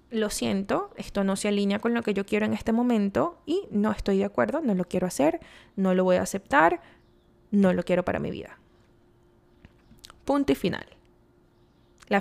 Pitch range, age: 195-250 Hz, 20-39